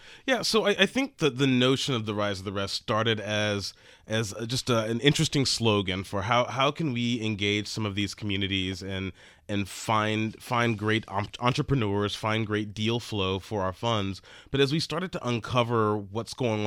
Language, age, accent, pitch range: English, 30-49, American, 105-130 Hz